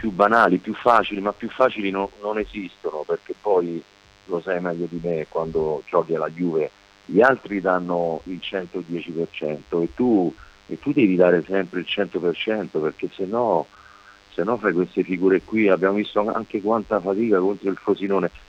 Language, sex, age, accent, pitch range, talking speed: Italian, male, 50-69, native, 90-110 Hz, 170 wpm